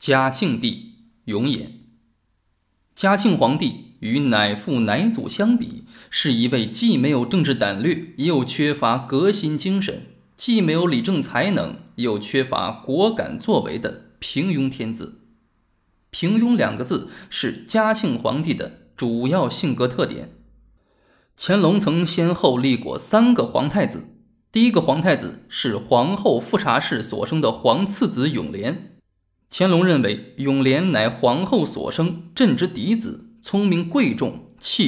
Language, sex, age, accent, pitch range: Chinese, male, 20-39, native, 130-215 Hz